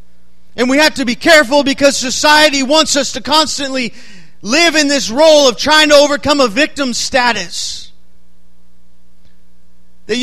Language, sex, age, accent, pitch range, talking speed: English, male, 40-59, American, 175-265 Hz, 140 wpm